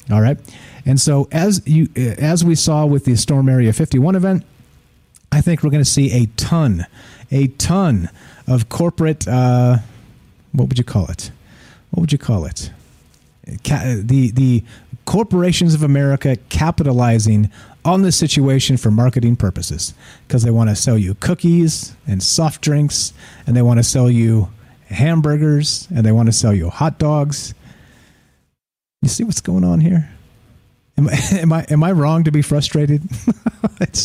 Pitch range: 120-160 Hz